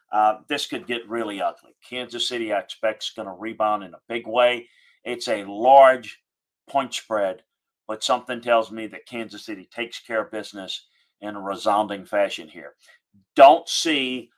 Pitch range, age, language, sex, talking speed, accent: 110-130 Hz, 40-59, English, male, 170 wpm, American